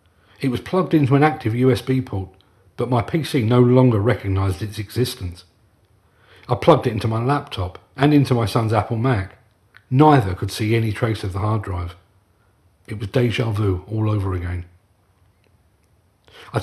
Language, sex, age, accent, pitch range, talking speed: English, male, 40-59, British, 95-130 Hz, 160 wpm